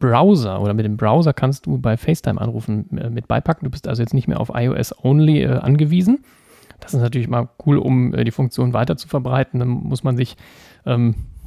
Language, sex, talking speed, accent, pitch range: German, male, 210 wpm, German, 115-150 Hz